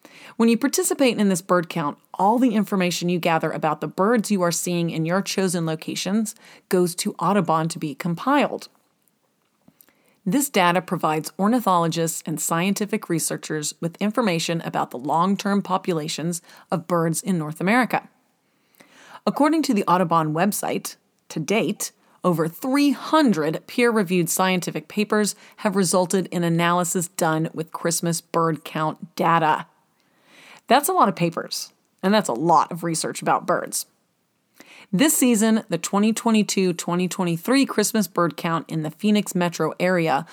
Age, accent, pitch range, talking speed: 30-49, American, 170-215 Hz, 140 wpm